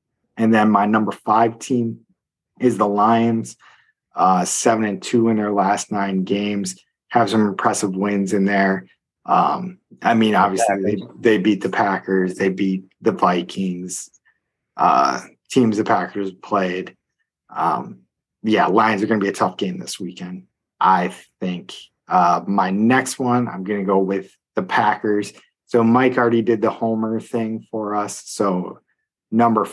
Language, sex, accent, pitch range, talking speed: English, male, American, 95-115 Hz, 155 wpm